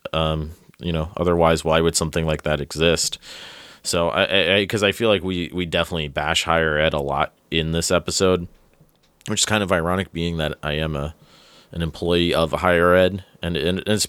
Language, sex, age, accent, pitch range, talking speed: English, male, 30-49, American, 80-90 Hz, 200 wpm